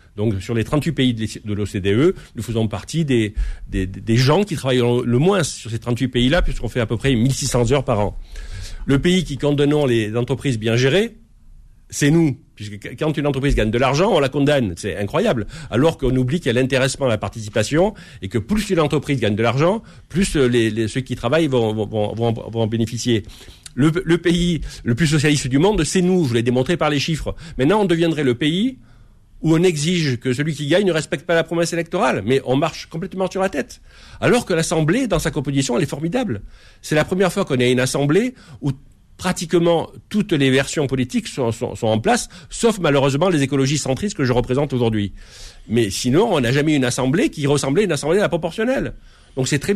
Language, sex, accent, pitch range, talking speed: French, male, French, 120-165 Hz, 220 wpm